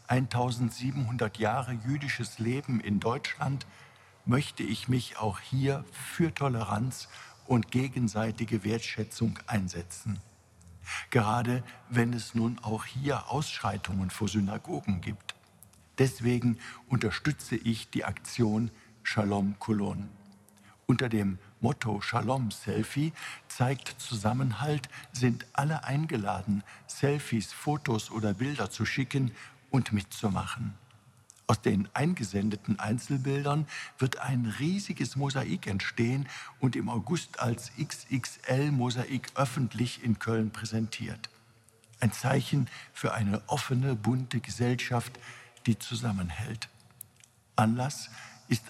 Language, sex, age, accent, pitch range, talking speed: German, male, 60-79, German, 105-130 Hz, 100 wpm